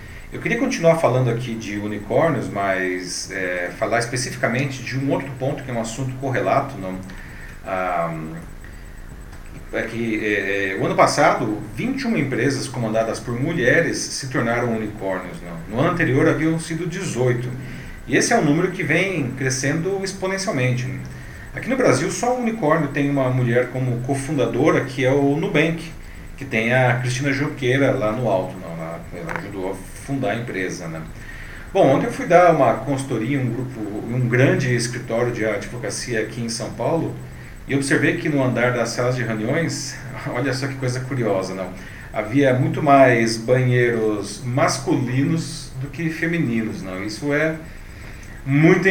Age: 40-59